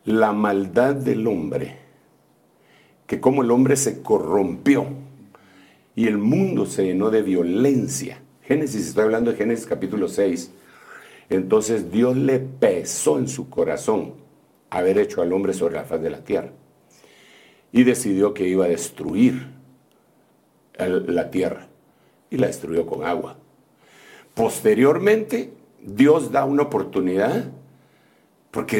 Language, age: Spanish, 60-79